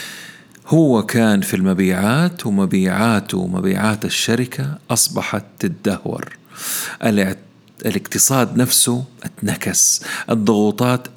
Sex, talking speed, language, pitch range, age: male, 70 wpm, Arabic, 105-155 Hz, 40-59